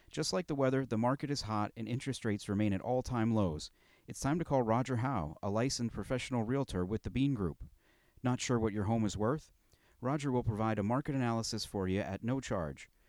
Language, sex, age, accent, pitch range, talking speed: English, male, 40-59, American, 100-125 Hz, 215 wpm